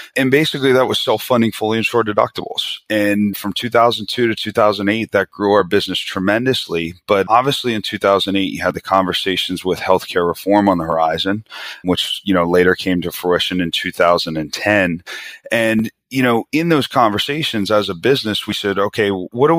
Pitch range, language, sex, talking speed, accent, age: 90-115 Hz, English, male, 170 wpm, American, 30-49